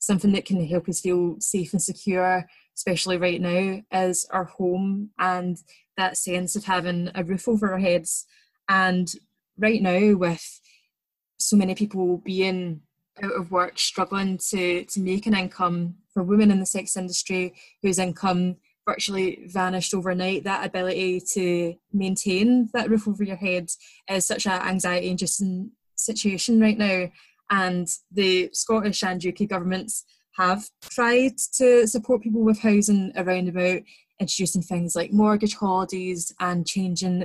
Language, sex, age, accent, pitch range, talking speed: English, female, 20-39, British, 180-200 Hz, 150 wpm